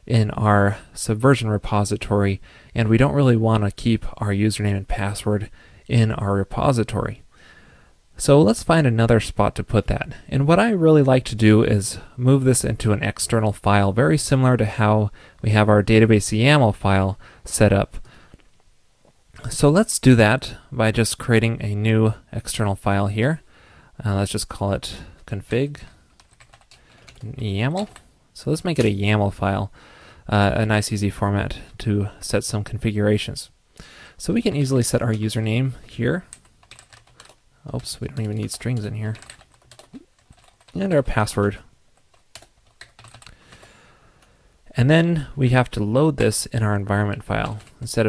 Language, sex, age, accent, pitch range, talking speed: English, male, 30-49, American, 105-125 Hz, 145 wpm